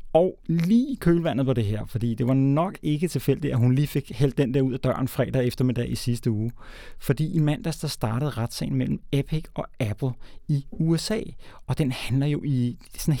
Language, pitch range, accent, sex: Danish, 120-160 Hz, native, male